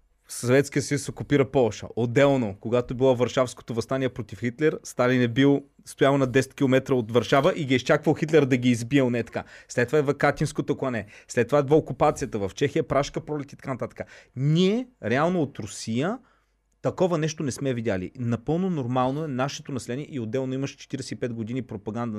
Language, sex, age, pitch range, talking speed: Bulgarian, male, 30-49, 120-155 Hz, 180 wpm